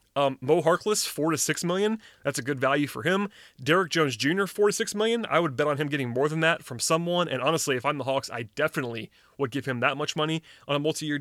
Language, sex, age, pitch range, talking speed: English, male, 30-49, 130-165 Hz, 250 wpm